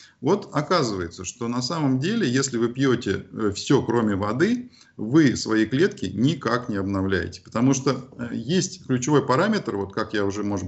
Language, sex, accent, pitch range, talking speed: Russian, male, native, 100-130 Hz, 155 wpm